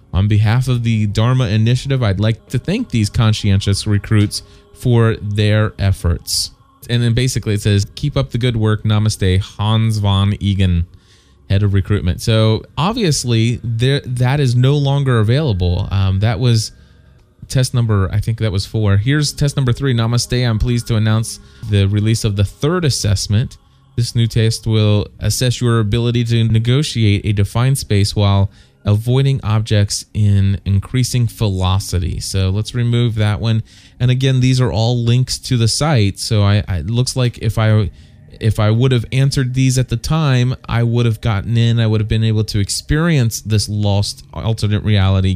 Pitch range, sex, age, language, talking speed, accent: 100-120 Hz, male, 20-39, English, 170 wpm, American